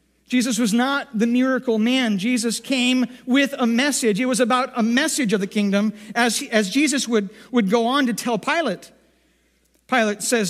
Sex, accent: male, American